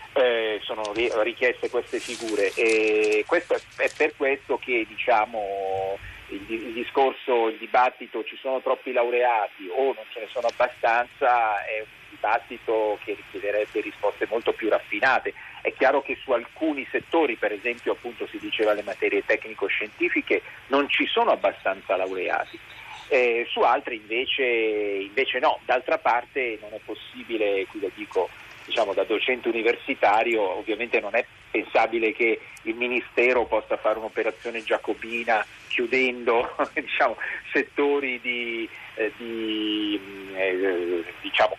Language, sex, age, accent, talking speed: Italian, male, 40-59, native, 130 wpm